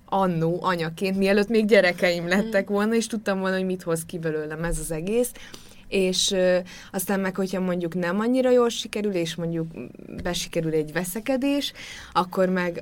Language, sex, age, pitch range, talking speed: Hungarian, female, 20-39, 160-190 Hz, 160 wpm